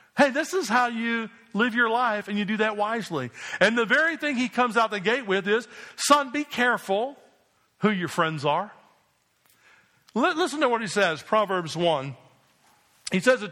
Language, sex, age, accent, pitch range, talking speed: English, male, 50-69, American, 190-250 Hz, 180 wpm